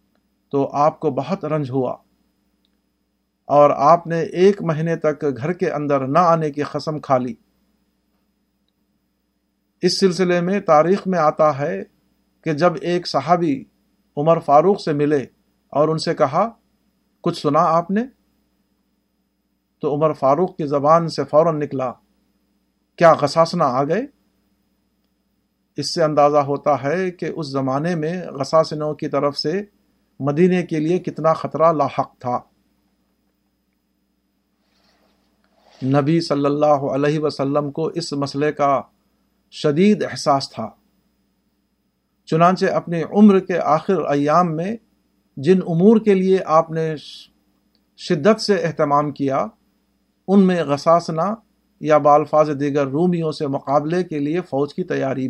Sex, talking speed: male, 130 wpm